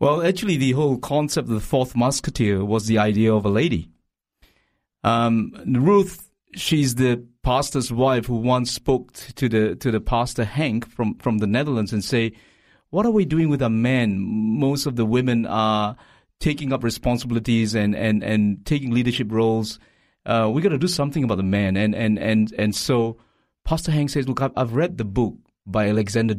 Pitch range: 105-130 Hz